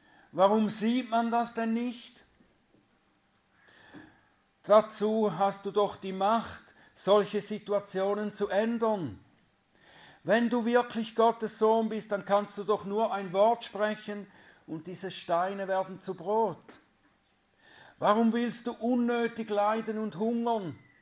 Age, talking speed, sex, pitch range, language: 50-69, 125 wpm, male, 160-220 Hz, German